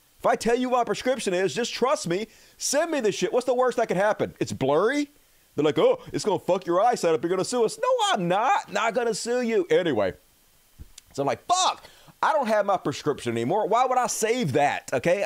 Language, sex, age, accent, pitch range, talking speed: English, male, 30-49, American, 160-250 Hz, 250 wpm